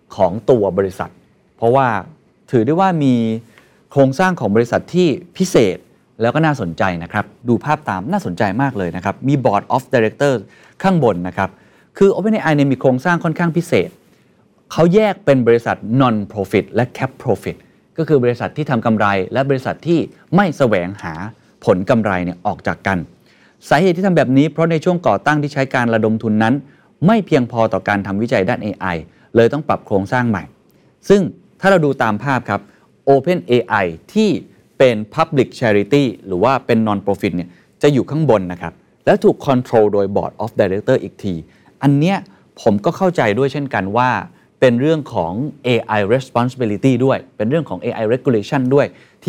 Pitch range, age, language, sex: 105-150 Hz, 30-49, Thai, male